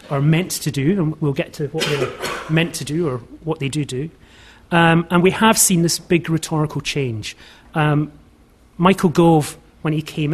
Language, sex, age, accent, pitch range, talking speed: English, male, 30-49, British, 140-170 Hz, 190 wpm